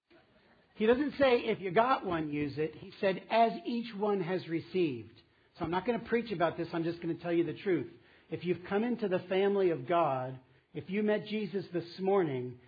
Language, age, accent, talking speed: English, 50-69, American, 220 wpm